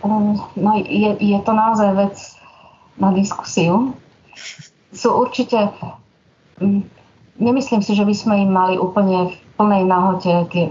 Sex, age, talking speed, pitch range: female, 30-49, 120 wpm, 180-205 Hz